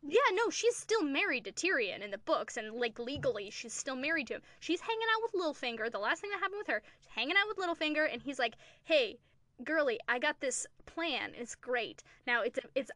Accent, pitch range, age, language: American, 240-330 Hz, 10-29, English